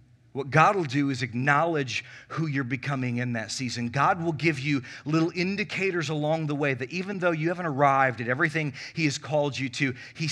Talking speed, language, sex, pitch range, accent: 205 wpm, English, male, 125-185 Hz, American